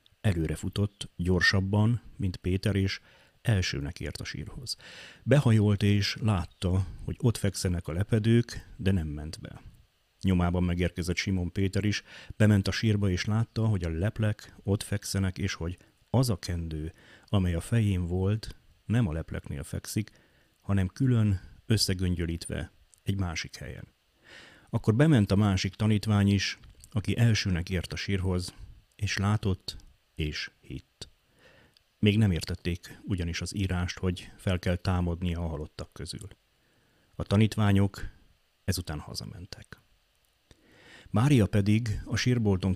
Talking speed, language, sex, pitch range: 130 wpm, Hungarian, male, 90-105 Hz